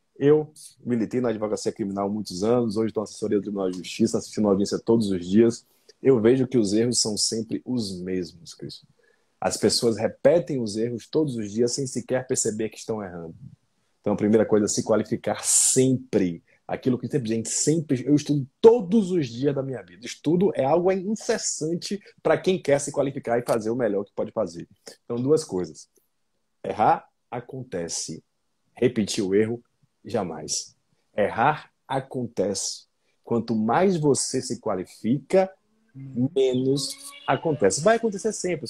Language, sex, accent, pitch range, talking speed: Portuguese, male, Brazilian, 115-185 Hz, 160 wpm